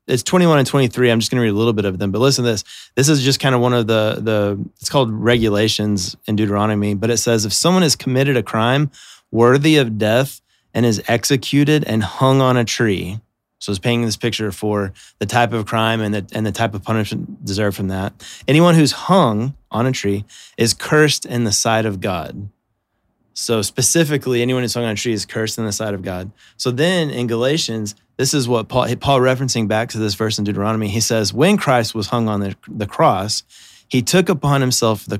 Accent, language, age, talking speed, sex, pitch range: American, English, 20-39, 225 wpm, male, 105-130 Hz